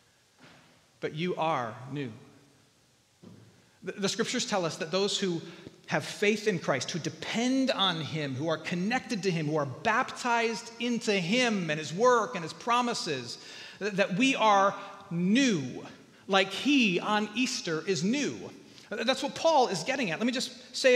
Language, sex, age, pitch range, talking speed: English, male, 40-59, 190-260 Hz, 160 wpm